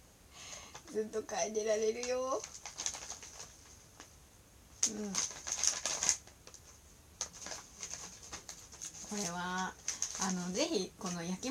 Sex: female